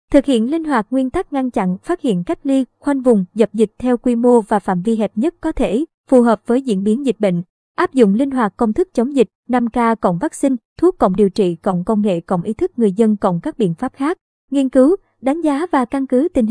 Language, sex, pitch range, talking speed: Vietnamese, male, 215-265 Hz, 255 wpm